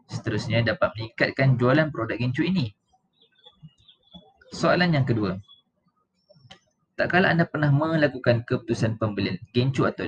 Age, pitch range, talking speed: 20-39, 115-150 Hz, 115 wpm